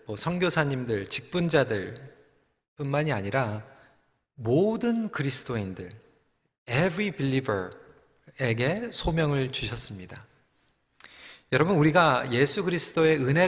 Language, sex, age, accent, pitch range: Korean, male, 40-59, native, 125-195 Hz